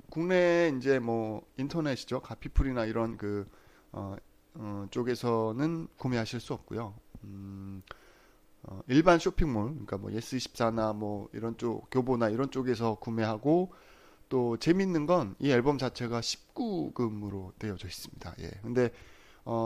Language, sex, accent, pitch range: Korean, male, native, 105-150 Hz